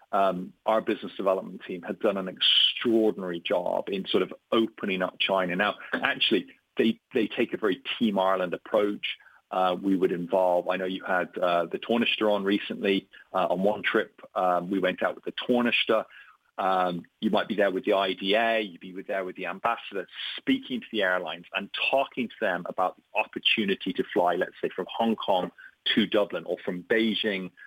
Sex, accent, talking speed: male, British, 190 wpm